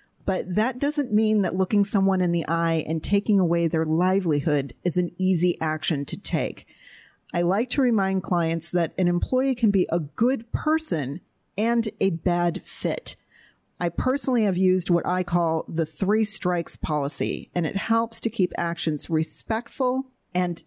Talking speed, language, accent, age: 165 wpm, English, American, 40-59